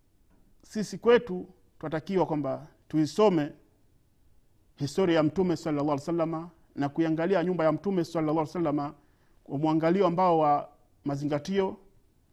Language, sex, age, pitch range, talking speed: Swahili, male, 40-59, 120-165 Hz, 115 wpm